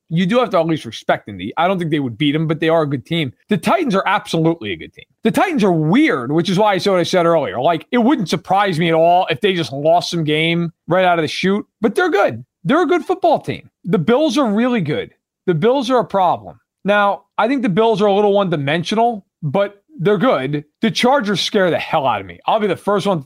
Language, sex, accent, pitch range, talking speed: English, male, American, 165-230 Hz, 265 wpm